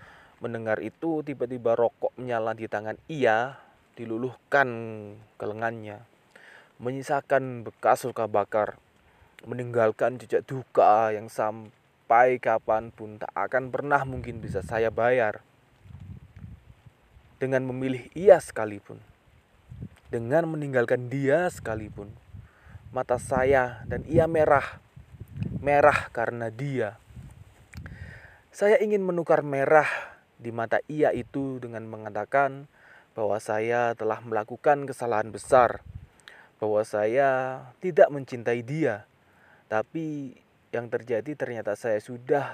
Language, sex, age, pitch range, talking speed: Indonesian, male, 20-39, 110-135 Hz, 100 wpm